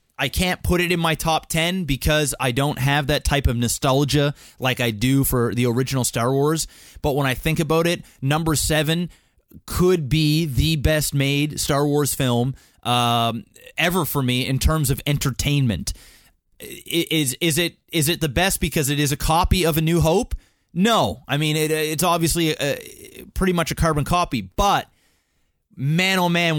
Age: 30-49